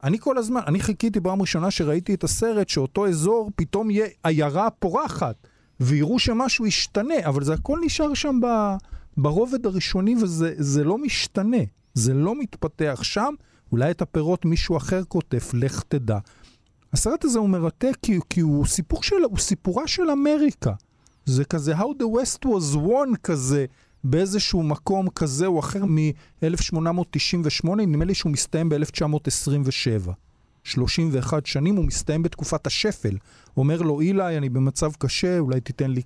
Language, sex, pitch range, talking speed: Hebrew, male, 140-195 Hz, 145 wpm